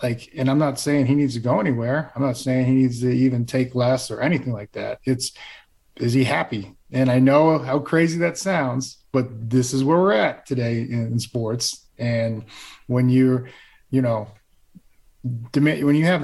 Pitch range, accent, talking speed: 120-145 Hz, American, 190 wpm